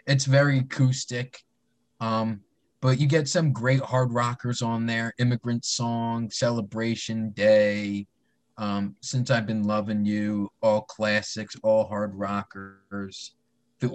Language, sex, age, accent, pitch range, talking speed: English, male, 20-39, American, 105-130 Hz, 125 wpm